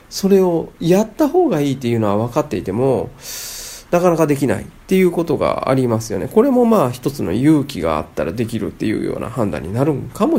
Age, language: 40-59, Japanese